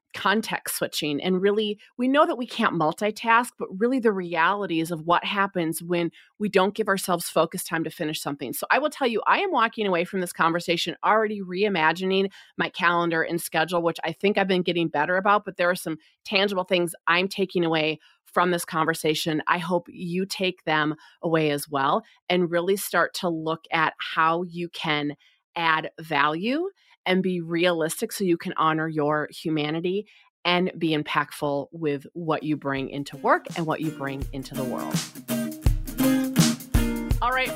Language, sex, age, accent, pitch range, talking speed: English, female, 30-49, American, 160-200 Hz, 175 wpm